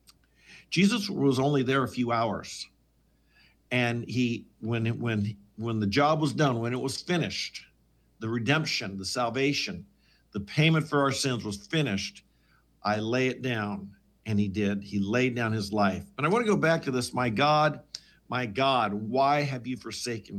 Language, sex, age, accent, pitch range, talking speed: English, male, 50-69, American, 115-150 Hz, 175 wpm